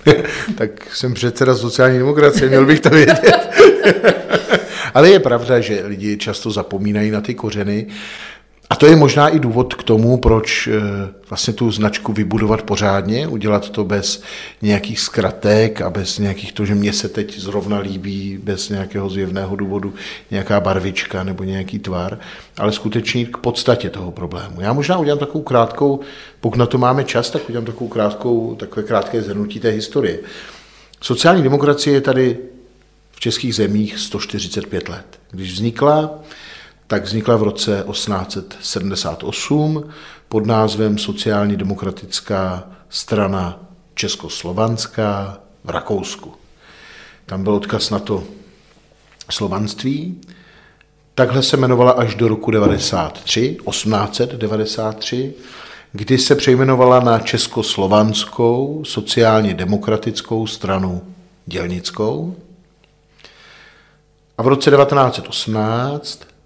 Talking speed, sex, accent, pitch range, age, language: 120 wpm, male, native, 100-125 Hz, 50-69, Czech